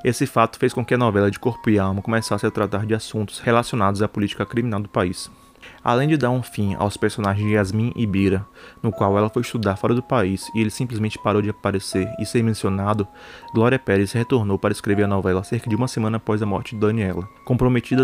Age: 20-39